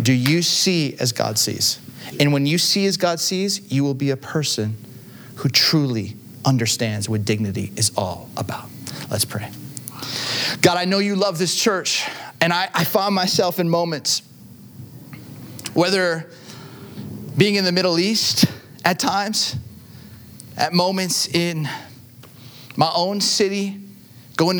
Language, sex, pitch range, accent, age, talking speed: English, male, 125-170 Hz, American, 30-49, 140 wpm